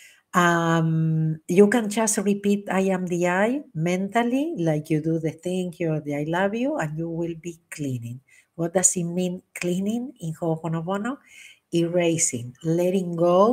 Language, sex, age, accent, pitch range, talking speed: English, female, 50-69, Spanish, 160-190 Hz, 155 wpm